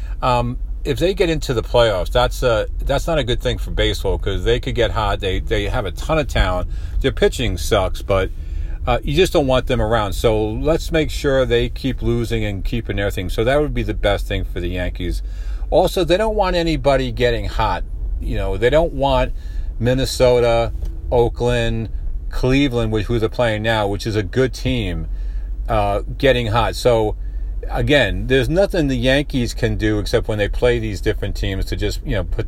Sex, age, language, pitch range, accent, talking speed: male, 40-59, English, 95-130 Hz, American, 195 wpm